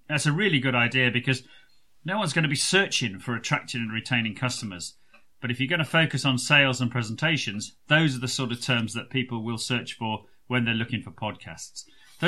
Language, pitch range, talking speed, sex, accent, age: English, 120-150 Hz, 215 wpm, male, British, 30-49